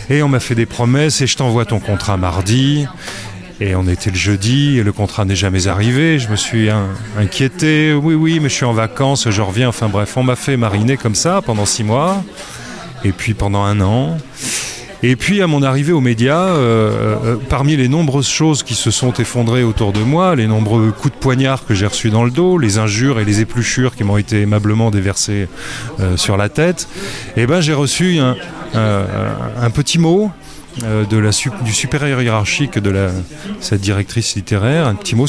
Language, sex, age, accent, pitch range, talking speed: French, male, 30-49, French, 105-135 Hz, 205 wpm